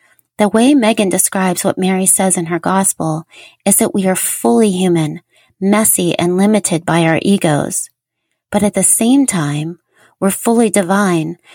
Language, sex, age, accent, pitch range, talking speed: English, female, 30-49, American, 180-220 Hz, 155 wpm